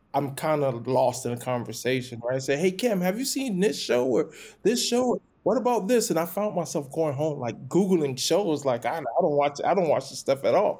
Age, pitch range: 20-39, 125-185 Hz